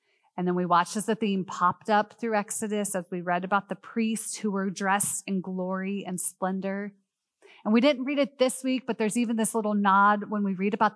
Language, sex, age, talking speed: English, female, 30-49, 225 wpm